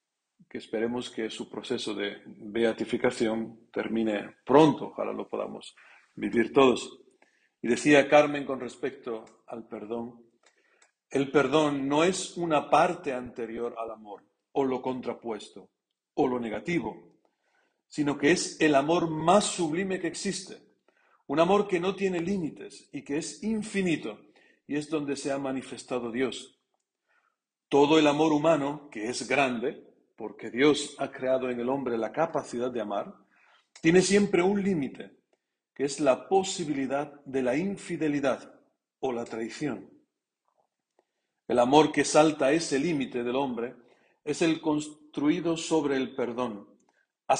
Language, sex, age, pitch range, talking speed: Spanish, male, 50-69, 120-155 Hz, 140 wpm